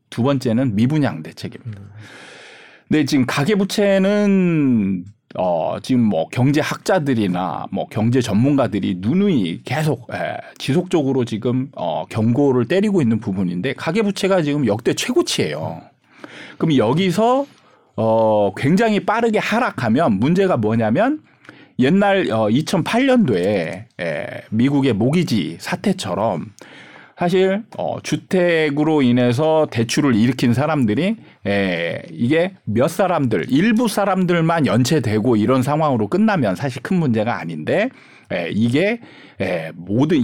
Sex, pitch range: male, 115-190 Hz